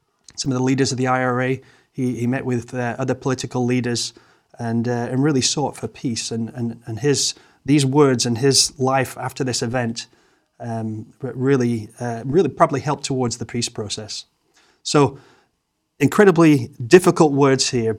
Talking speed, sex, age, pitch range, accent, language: 165 wpm, male, 30-49, 120-140 Hz, British, English